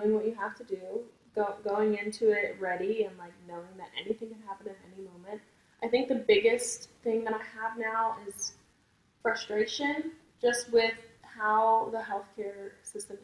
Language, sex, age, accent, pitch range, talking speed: English, female, 10-29, American, 190-230 Hz, 170 wpm